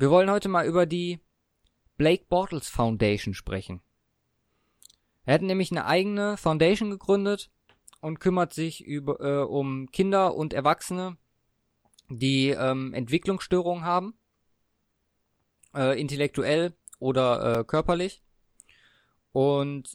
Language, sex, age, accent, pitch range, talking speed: German, male, 20-39, German, 115-145 Hz, 110 wpm